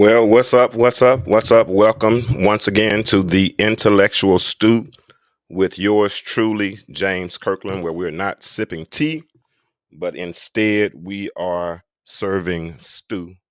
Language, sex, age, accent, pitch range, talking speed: English, male, 30-49, American, 85-105 Hz, 135 wpm